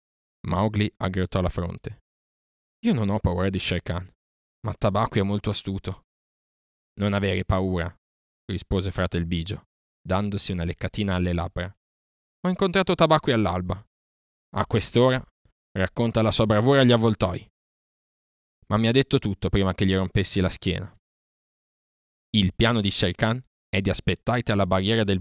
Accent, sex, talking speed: native, male, 150 wpm